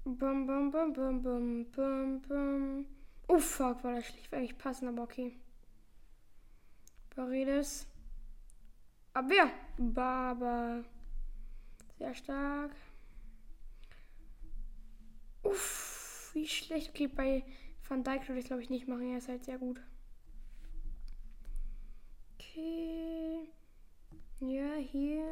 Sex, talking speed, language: female, 100 wpm, German